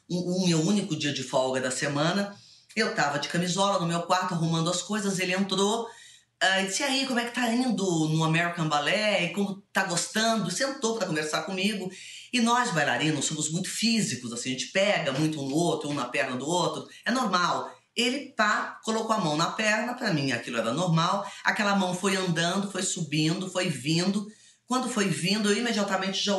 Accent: Brazilian